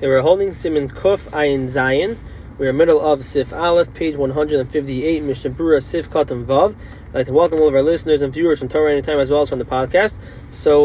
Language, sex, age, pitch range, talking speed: English, male, 20-39, 145-195 Hz, 220 wpm